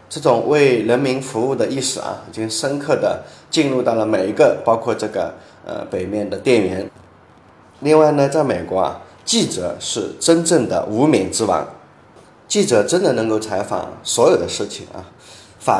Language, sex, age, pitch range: Chinese, male, 20-39, 120-165 Hz